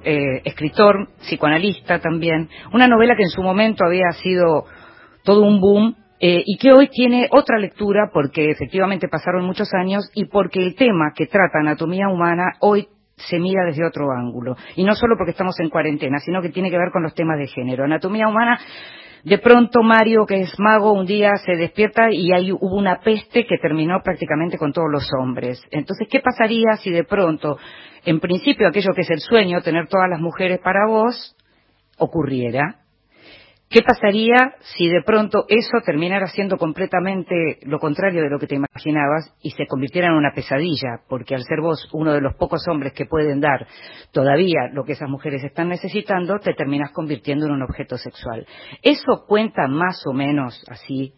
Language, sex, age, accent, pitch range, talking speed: Spanish, female, 40-59, Argentinian, 150-200 Hz, 180 wpm